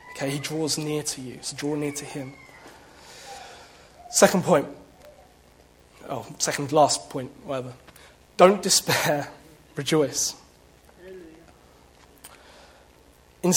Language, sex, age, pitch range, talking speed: English, male, 20-39, 125-190 Hz, 95 wpm